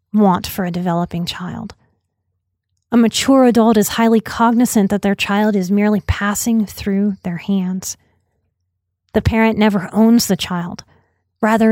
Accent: American